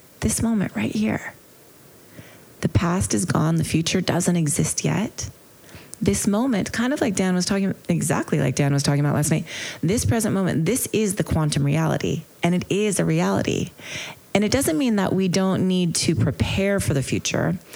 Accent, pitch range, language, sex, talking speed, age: American, 140-185 Hz, English, female, 185 wpm, 30-49